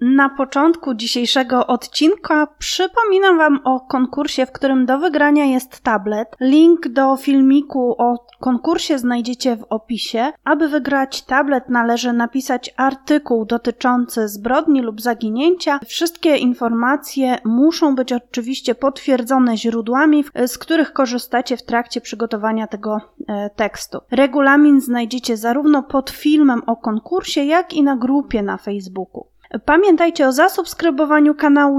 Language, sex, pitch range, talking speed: Polish, female, 235-285 Hz, 120 wpm